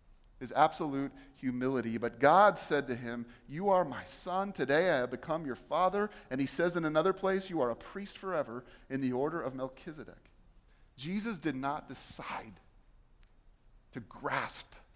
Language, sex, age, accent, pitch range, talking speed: English, male, 30-49, American, 130-175 Hz, 160 wpm